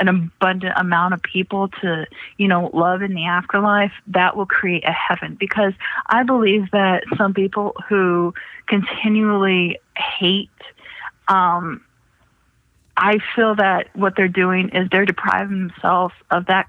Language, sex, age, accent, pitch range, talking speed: English, female, 30-49, American, 180-195 Hz, 140 wpm